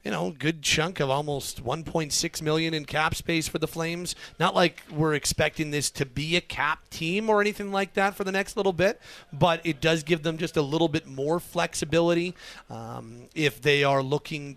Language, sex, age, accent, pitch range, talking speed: English, male, 40-59, American, 130-160 Hz, 200 wpm